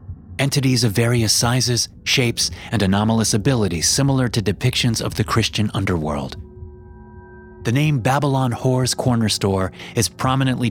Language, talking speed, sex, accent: English, 130 wpm, male, American